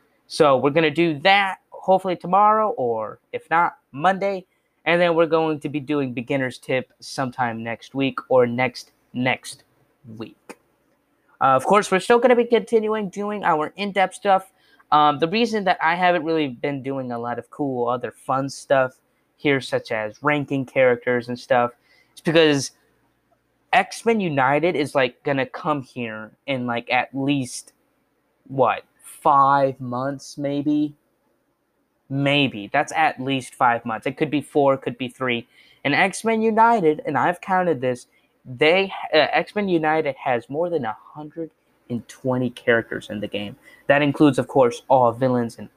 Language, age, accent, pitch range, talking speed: English, 20-39, American, 130-180 Hz, 160 wpm